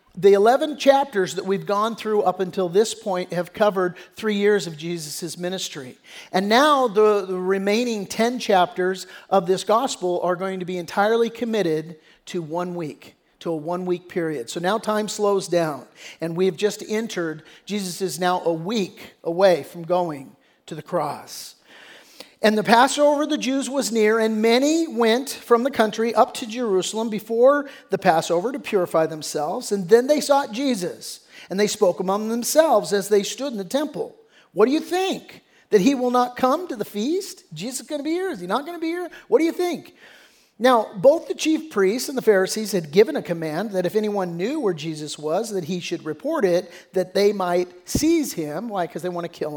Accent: American